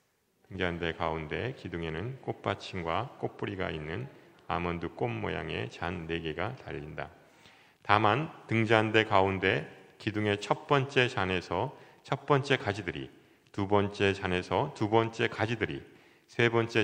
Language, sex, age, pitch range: Korean, male, 40-59, 85-115 Hz